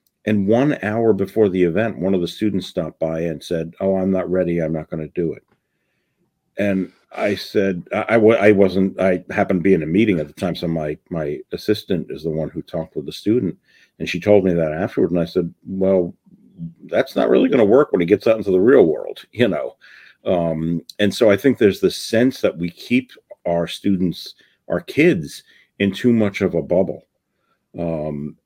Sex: male